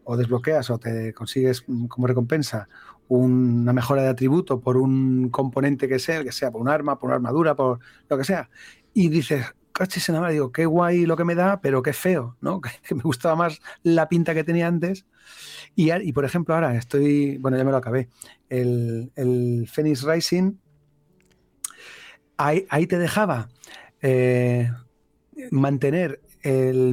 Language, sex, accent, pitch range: Spanish, male, Spanish, 130-170 Hz